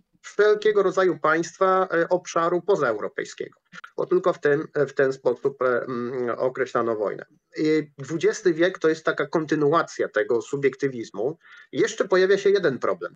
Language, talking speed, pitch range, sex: Polish, 115 wpm, 120-185 Hz, male